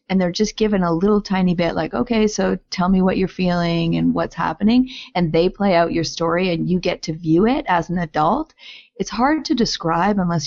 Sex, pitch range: female, 170-210 Hz